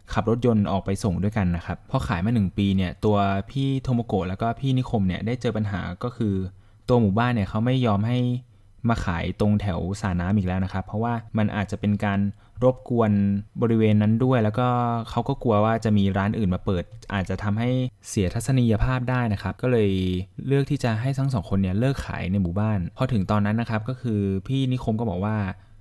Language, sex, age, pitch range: Thai, male, 20-39, 100-120 Hz